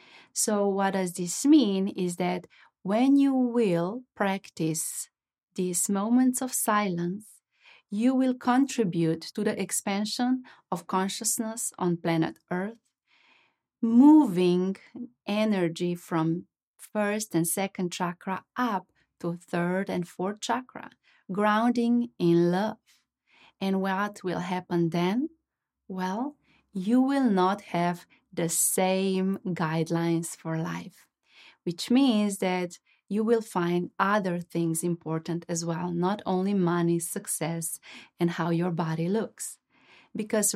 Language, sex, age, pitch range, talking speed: English, female, 30-49, 175-220 Hz, 115 wpm